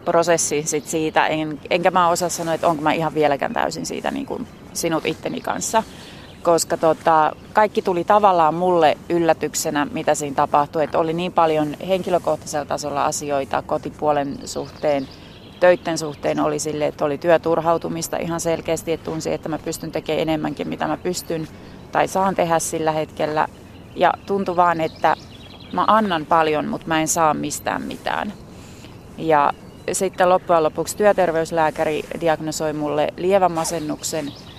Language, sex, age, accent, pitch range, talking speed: Finnish, female, 30-49, native, 155-180 Hz, 145 wpm